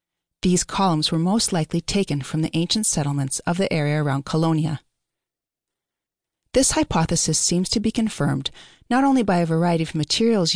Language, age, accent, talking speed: English, 40-59, American, 160 wpm